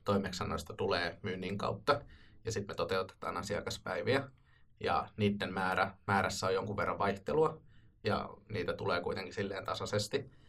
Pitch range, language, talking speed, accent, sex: 95-105 Hz, Finnish, 130 wpm, native, male